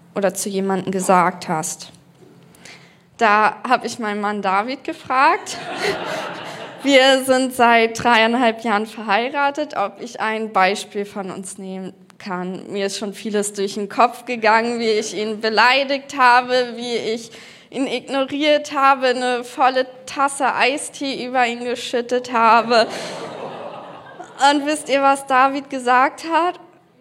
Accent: German